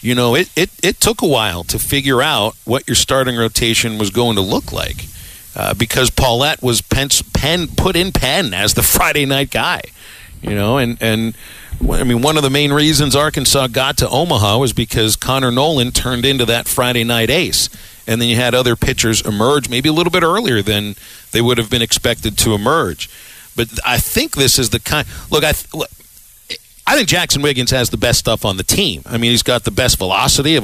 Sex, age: male, 50-69